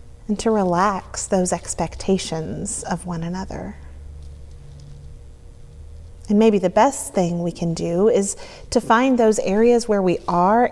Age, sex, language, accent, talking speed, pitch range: 30-49, female, English, American, 135 wpm, 165-220 Hz